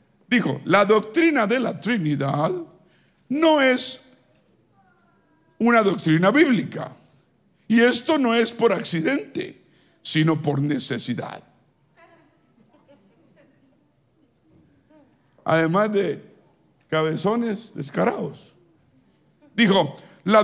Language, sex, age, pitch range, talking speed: Spanish, male, 60-79, 165-245 Hz, 75 wpm